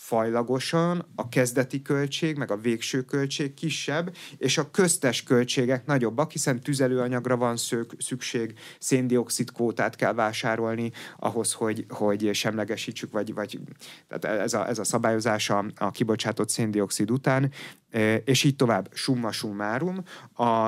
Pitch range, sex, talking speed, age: 105-135 Hz, male, 130 wpm, 30-49